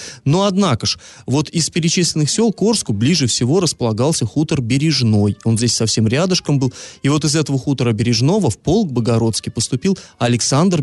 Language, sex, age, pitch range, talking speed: Russian, male, 30-49, 115-145 Hz, 160 wpm